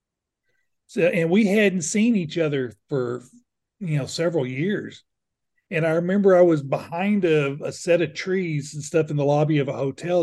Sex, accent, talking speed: male, American, 180 wpm